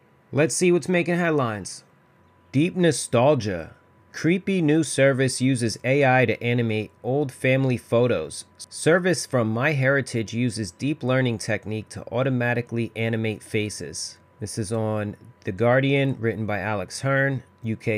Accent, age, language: American, 30-49, English